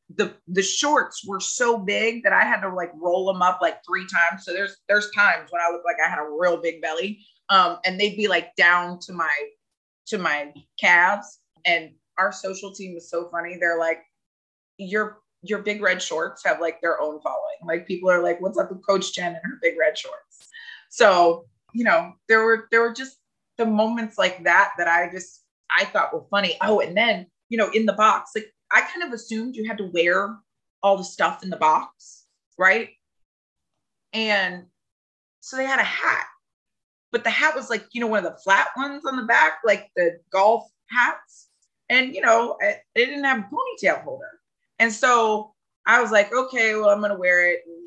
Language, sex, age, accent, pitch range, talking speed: English, female, 30-49, American, 170-220 Hz, 205 wpm